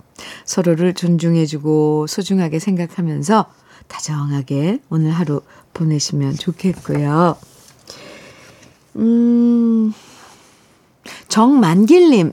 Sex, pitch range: female, 155-220 Hz